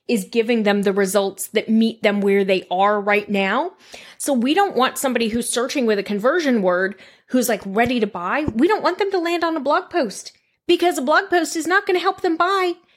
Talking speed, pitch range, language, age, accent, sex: 230 wpm, 205-275 Hz, English, 30-49, American, female